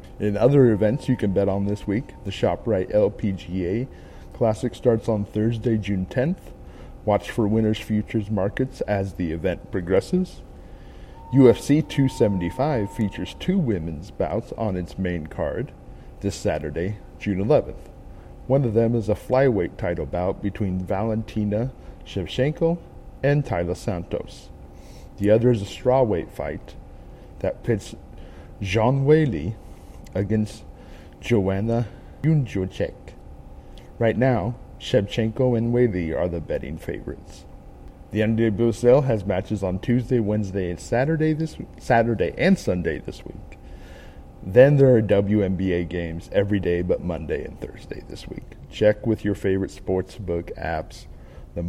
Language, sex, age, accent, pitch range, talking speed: English, male, 50-69, American, 90-115 Hz, 130 wpm